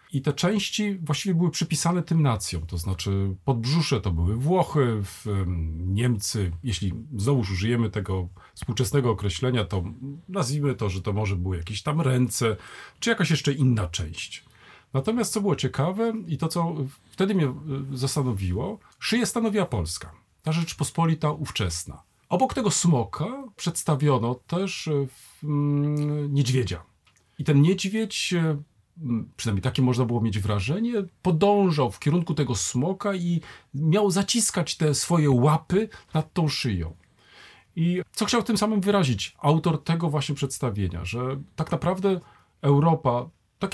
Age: 40-59